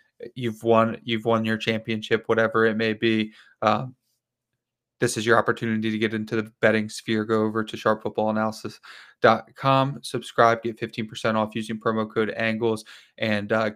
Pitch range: 110-120 Hz